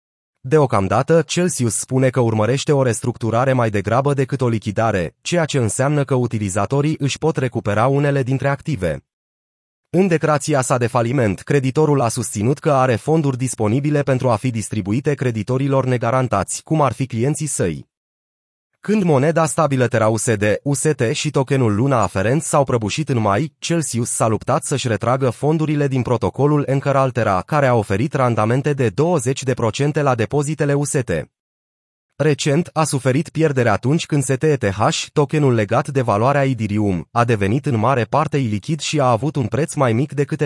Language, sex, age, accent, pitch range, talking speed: Romanian, male, 30-49, native, 115-150 Hz, 155 wpm